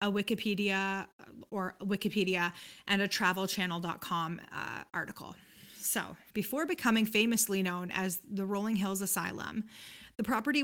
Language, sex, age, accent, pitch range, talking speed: English, female, 20-39, American, 190-220 Hz, 120 wpm